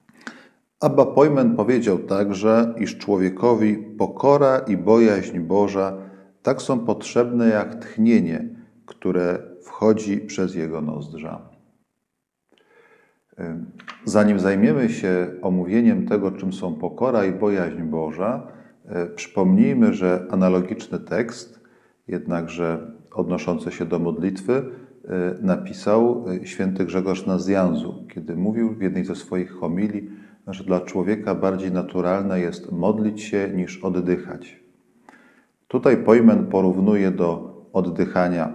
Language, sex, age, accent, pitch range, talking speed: Polish, male, 40-59, native, 90-105 Hz, 105 wpm